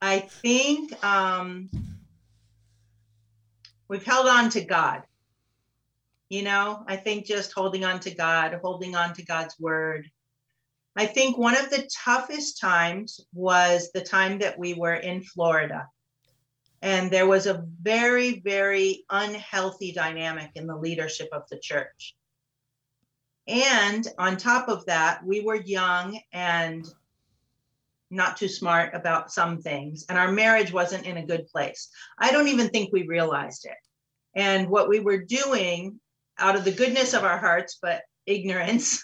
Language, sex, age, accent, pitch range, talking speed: English, female, 40-59, American, 160-200 Hz, 145 wpm